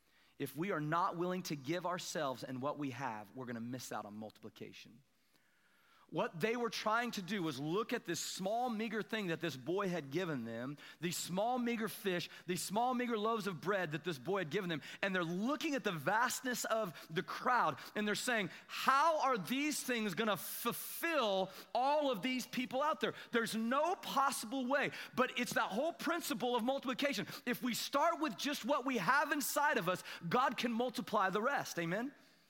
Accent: American